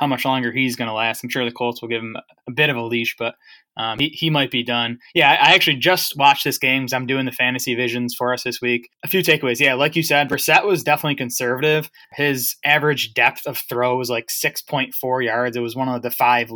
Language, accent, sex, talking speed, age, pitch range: English, American, male, 250 wpm, 20-39, 120-145 Hz